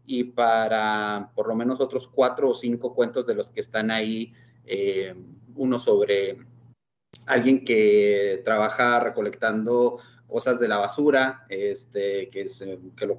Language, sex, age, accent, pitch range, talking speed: Spanish, male, 30-49, Mexican, 110-135 Hz, 140 wpm